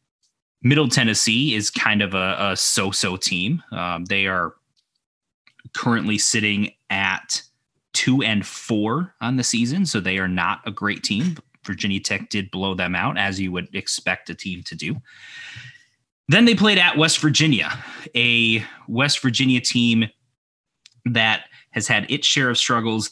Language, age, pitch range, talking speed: English, 20-39, 100-125 Hz, 155 wpm